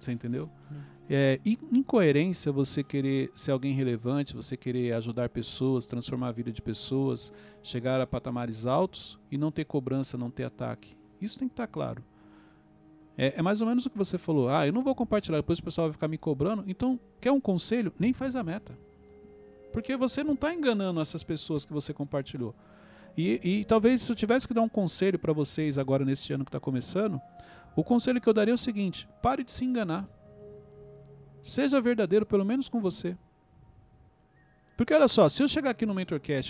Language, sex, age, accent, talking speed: Portuguese, male, 40-59, Brazilian, 195 wpm